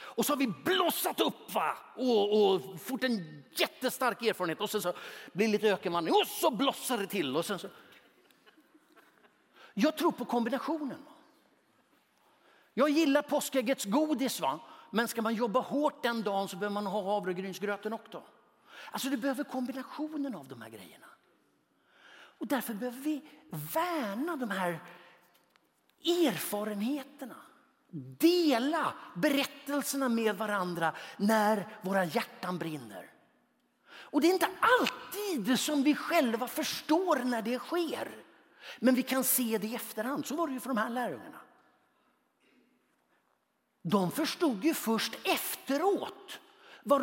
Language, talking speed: Swedish, 140 wpm